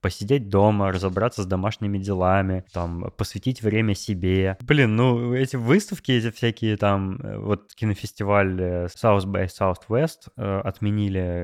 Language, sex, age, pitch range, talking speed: Russian, male, 20-39, 95-120 Hz, 125 wpm